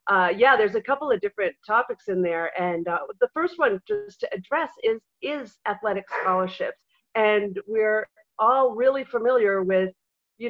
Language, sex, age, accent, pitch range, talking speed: English, female, 40-59, American, 190-270 Hz, 165 wpm